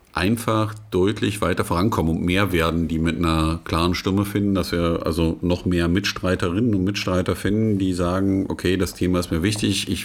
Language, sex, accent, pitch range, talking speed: German, male, German, 95-120 Hz, 185 wpm